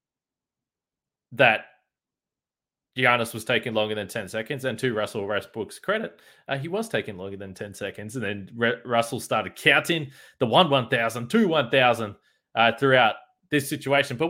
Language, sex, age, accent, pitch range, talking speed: English, male, 20-39, Australian, 110-150 Hz, 140 wpm